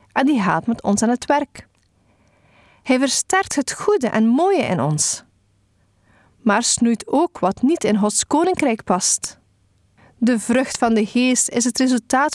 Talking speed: 160 wpm